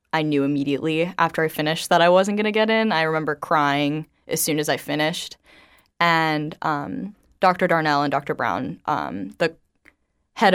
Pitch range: 150-180 Hz